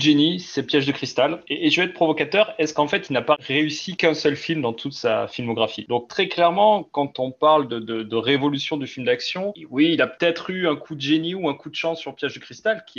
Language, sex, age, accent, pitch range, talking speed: French, male, 30-49, French, 125-160 Hz, 265 wpm